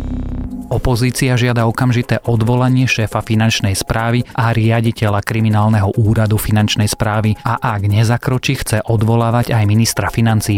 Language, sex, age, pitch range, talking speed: Slovak, male, 30-49, 105-120 Hz, 120 wpm